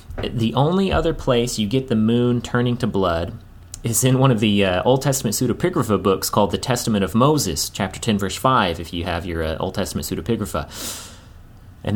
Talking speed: 195 wpm